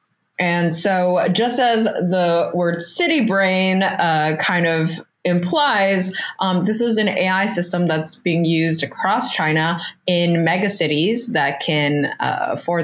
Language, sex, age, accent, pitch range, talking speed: English, female, 20-39, American, 145-185 Hz, 135 wpm